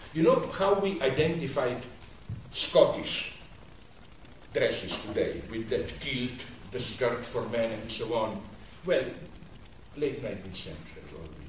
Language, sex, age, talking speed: English, male, 60-79, 120 wpm